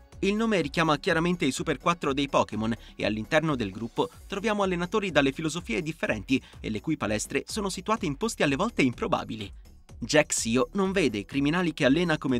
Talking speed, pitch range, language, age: 185 wpm, 120-175 Hz, Italian, 30-49